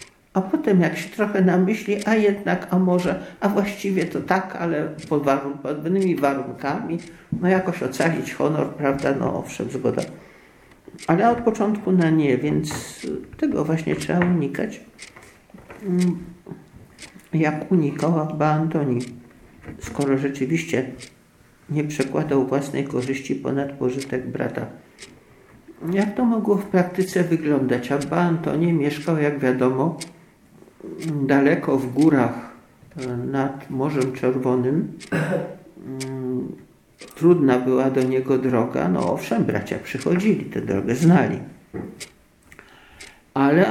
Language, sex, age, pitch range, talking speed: Polish, male, 50-69, 135-180 Hz, 110 wpm